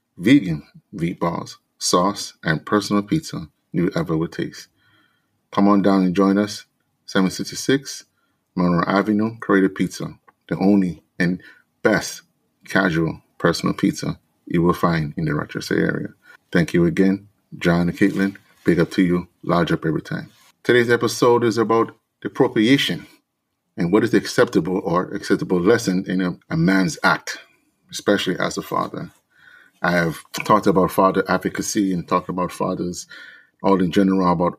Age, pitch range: 30-49, 90-105 Hz